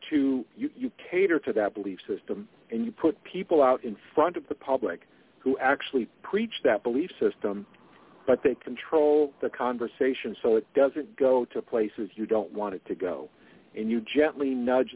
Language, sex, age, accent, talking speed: English, male, 50-69, American, 180 wpm